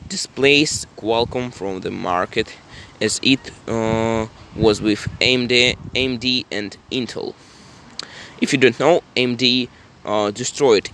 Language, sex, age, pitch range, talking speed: English, male, 20-39, 110-140 Hz, 115 wpm